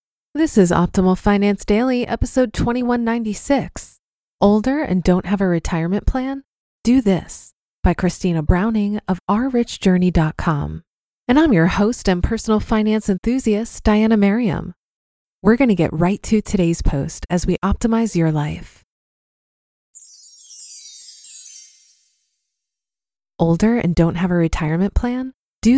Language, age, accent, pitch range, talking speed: English, 20-39, American, 175-230 Hz, 120 wpm